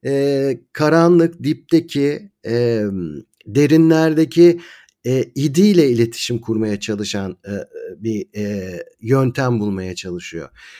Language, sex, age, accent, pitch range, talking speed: Turkish, male, 50-69, native, 115-160 Hz, 95 wpm